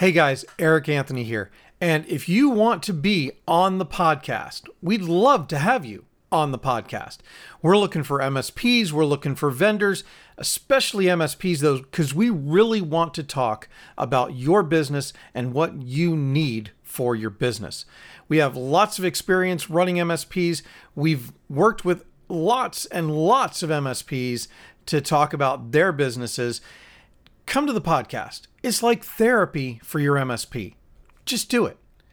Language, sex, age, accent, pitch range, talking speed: English, male, 40-59, American, 130-180 Hz, 155 wpm